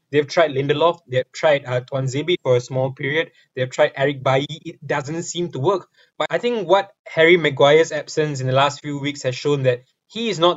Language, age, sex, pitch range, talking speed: English, 20-39, male, 135-165 Hz, 215 wpm